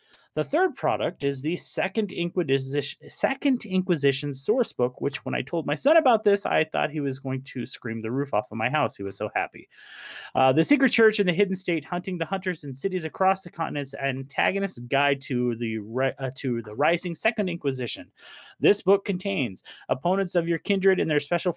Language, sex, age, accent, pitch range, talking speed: English, male, 30-49, American, 135-185 Hz, 200 wpm